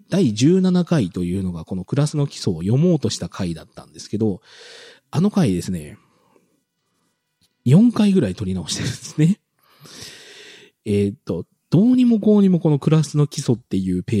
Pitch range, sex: 105-165 Hz, male